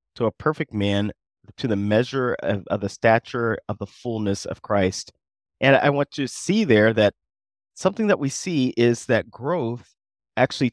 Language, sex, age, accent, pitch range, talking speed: English, male, 30-49, American, 105-125 Hz, 180 wpm